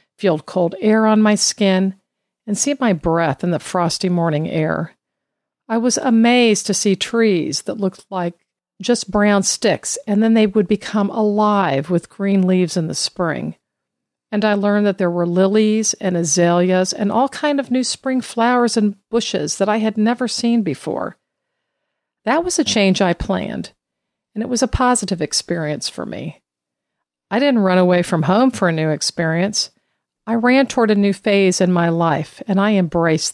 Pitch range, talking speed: 175-225 Hz, 180 wpm